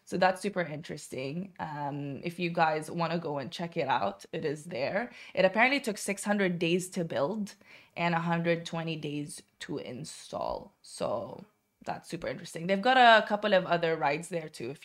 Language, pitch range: Arabic, 165-195 Hz